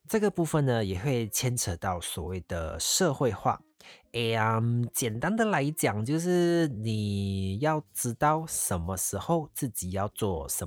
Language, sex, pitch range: Chinese, male, 100-145 Hz